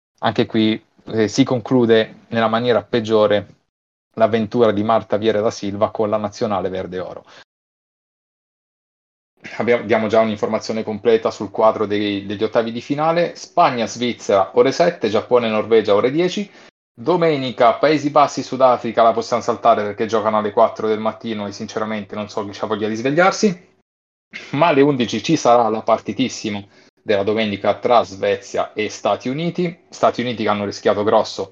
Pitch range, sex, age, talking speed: 105-130 Hz, male, 30-49, 145 wpm